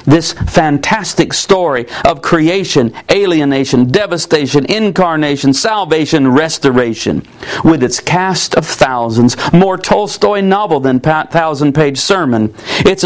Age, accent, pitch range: 50-69, American, 145-195 Hz